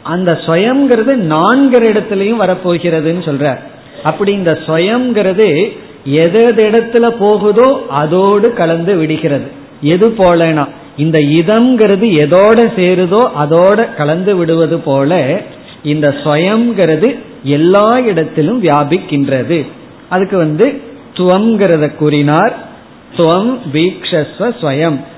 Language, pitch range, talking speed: Tamil, 155-210 Hz, 70 wpm